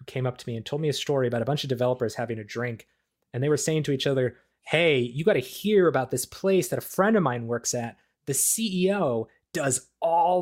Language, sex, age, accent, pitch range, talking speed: English, male, 20-39, American, 120-175 Hz, 250 wpm